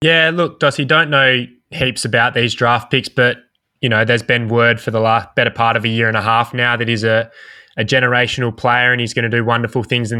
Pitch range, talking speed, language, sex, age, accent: 110-125 Hz, 245 wpm, English, male, 20-39, Australian